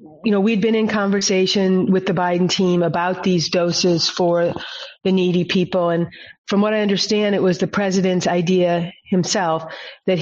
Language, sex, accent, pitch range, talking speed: English, female, American, 175-200 Hz, 170 wpm